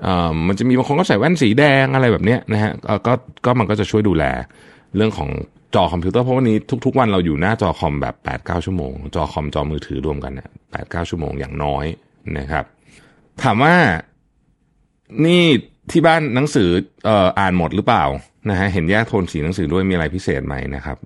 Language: Thai